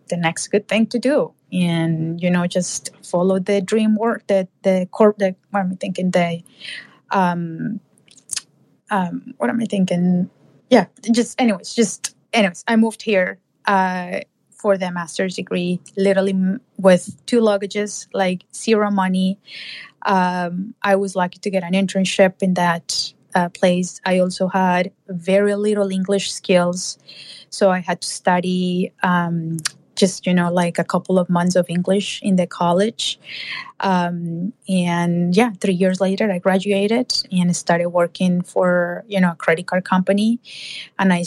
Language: English